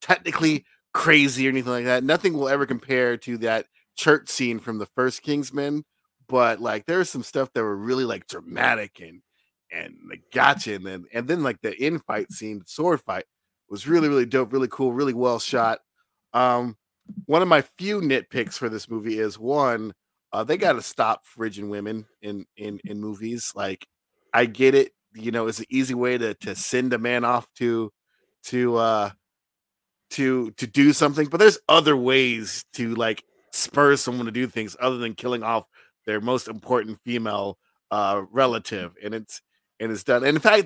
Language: English